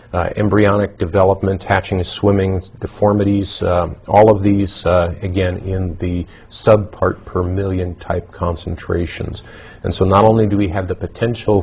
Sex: male